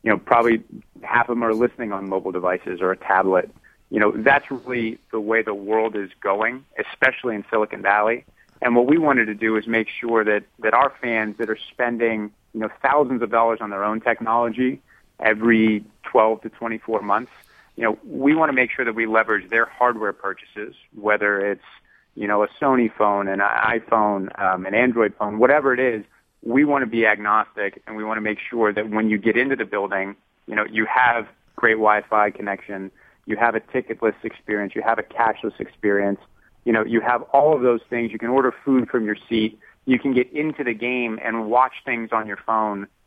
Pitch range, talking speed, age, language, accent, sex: 105-120 Hz, 210 wpm, 30-49, English, American, male